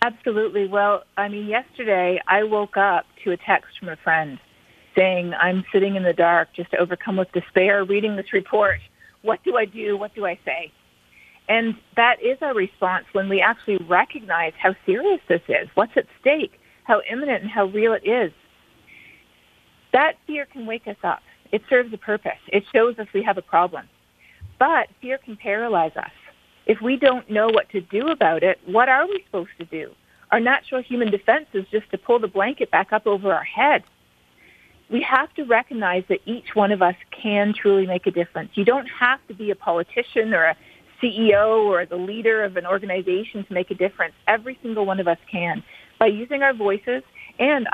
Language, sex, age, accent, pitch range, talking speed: English, female, 50-69, American, 185-235 Hz, 195 wpm